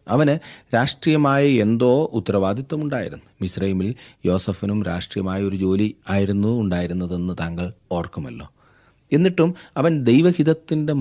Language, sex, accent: Malayalam, male, native